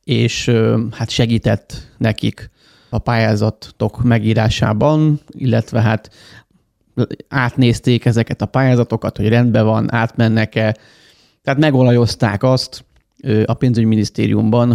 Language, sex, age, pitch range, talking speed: Hungarian, male, 30-49, 110-125 Hz, 90 wpm